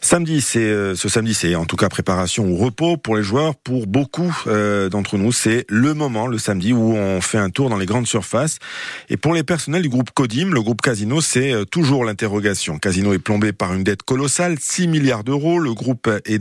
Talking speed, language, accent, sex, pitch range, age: 210 wpm, French, French, male, 105-140 Hz, 50-69